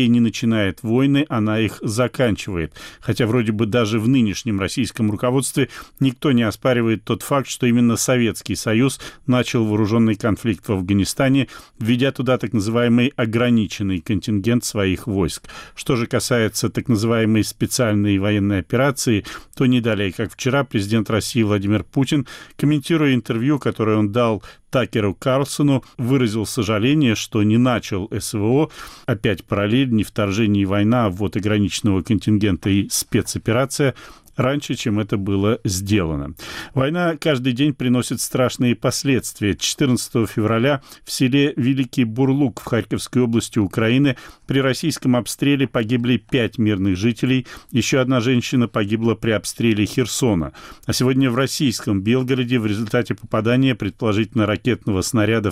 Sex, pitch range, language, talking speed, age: male, 105-130 Hz, Russian, 135 wpm, 40-59